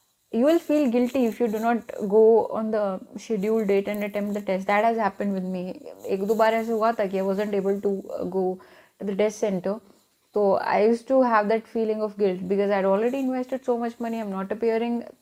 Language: Hindi